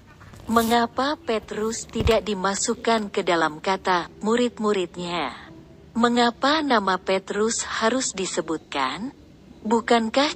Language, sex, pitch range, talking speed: Indonesian, female, 185-235 Hz, 80 wpm